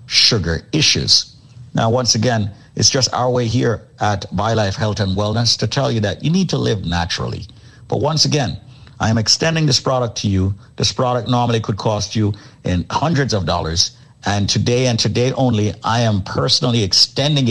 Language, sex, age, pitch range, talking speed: English, male, 50-69, 105-130 Hz, 185 wpm